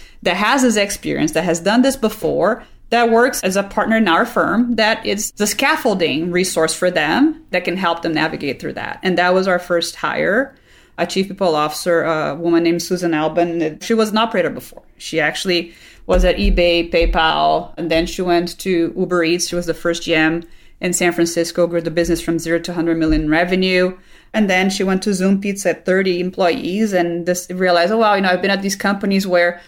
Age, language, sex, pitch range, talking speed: 30-49, English, female, 170-195 Hz, 210 wpm